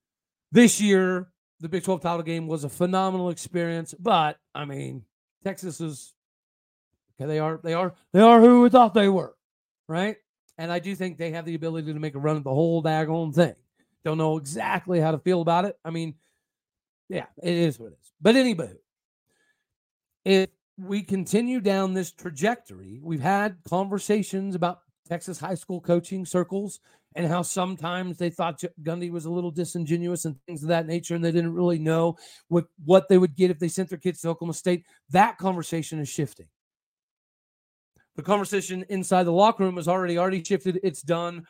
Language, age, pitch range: English, 40-59, 165-190 Hz